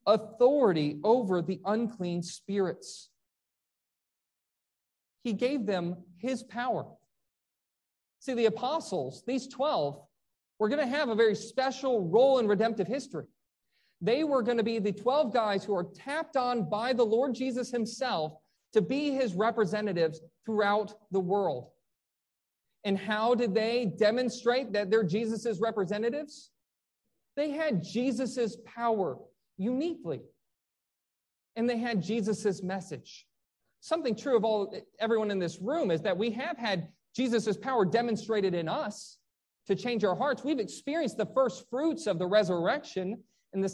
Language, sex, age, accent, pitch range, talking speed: English, male, 40-59, American, 190-245 Hz, 140 wpm